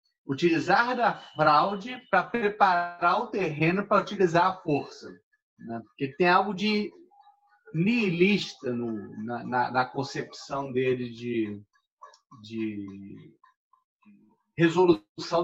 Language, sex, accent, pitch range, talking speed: Portuguese, male, Brazilian, 140-195 Hz, 100 wpm